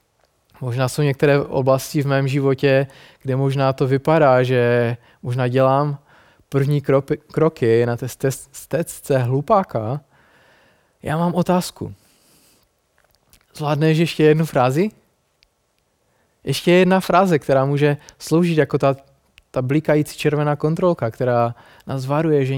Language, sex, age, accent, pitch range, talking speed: Czech, male, 20-39, native, 130-150 Hz, 115 wpm